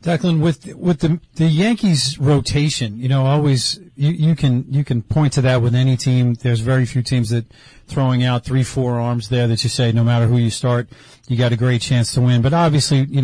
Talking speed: 225 wpm